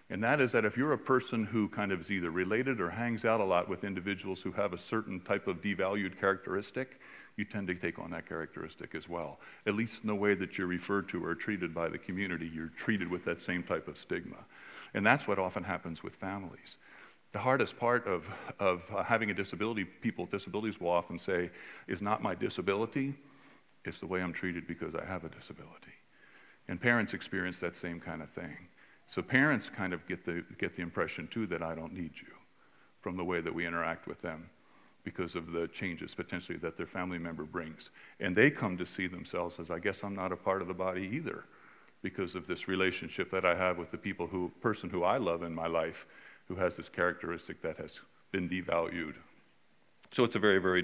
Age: 50-69